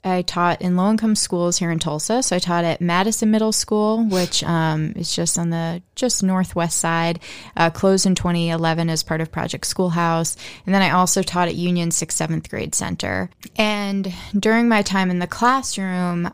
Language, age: English, 20-39